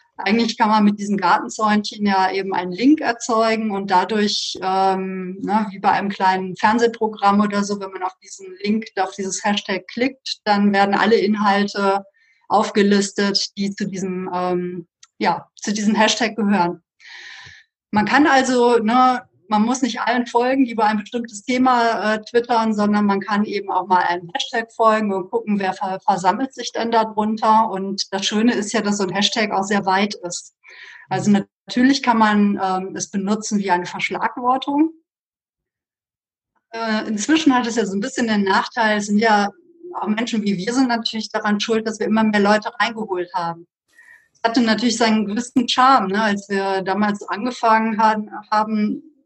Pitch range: 200-235 Hz